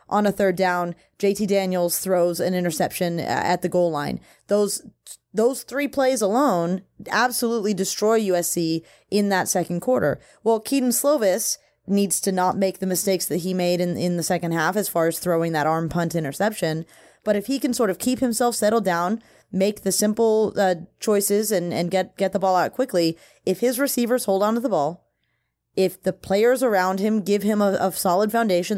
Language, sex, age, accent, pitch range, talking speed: English, female, 20-39, American, 180-220 Hz, 190 wpm